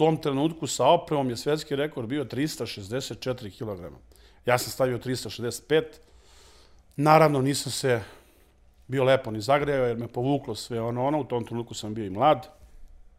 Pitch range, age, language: 120-150 Hz, 40-59, Croatian